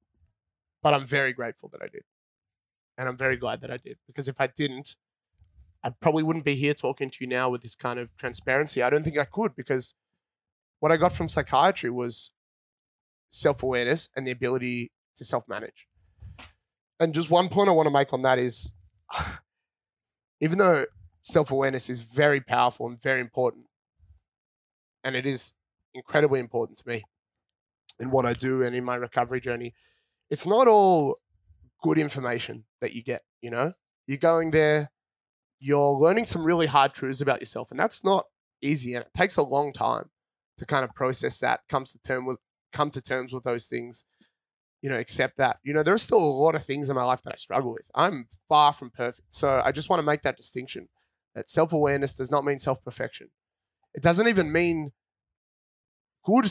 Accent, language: Australian, English